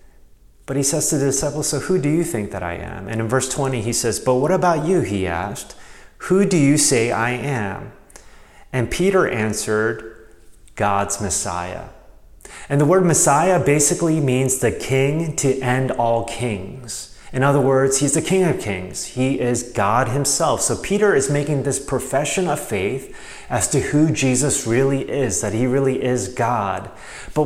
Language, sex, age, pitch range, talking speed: English, male, 30-49, 115-145 Hz, 175 wpm